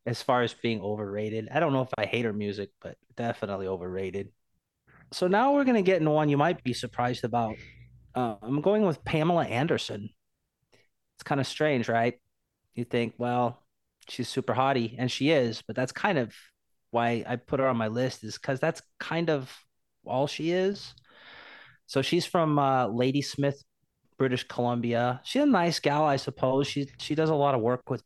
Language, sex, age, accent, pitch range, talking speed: English, male, 30-49, American, 110-145 Hz, 190 wpm